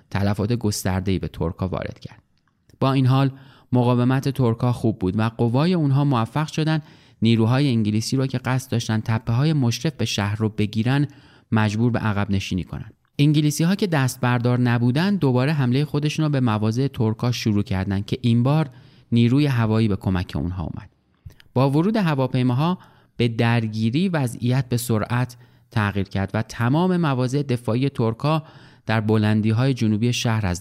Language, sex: Persian, male